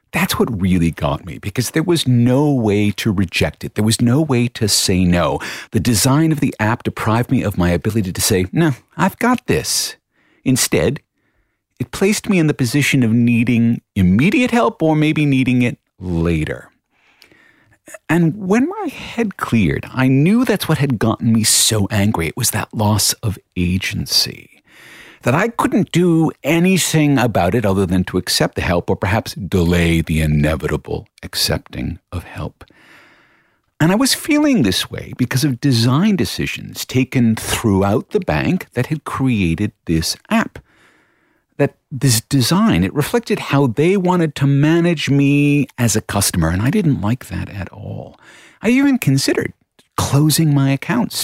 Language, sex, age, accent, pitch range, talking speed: English, male, 50-69, American, 100-155 Hz, 165 wpm